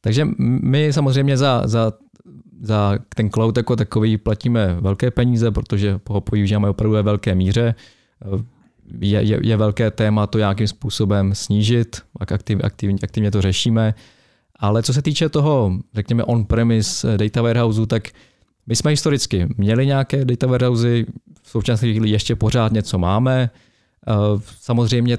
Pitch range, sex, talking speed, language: 100-115 Hz, male, 140 wpm, Czech